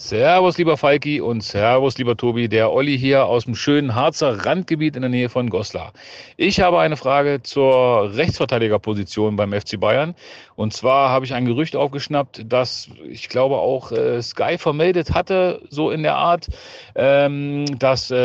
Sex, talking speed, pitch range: male, 160 wpm, 120-150 Hz